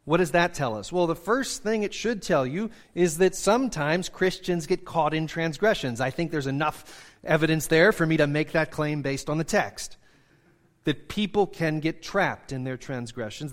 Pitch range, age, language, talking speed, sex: 125-175 Hz, 30-49, English, 200 wpm, male